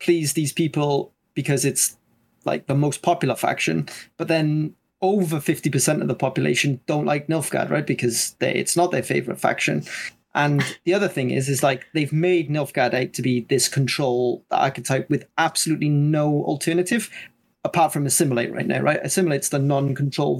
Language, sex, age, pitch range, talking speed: English, male, 30-49, 130-155 Hz, 165 wpm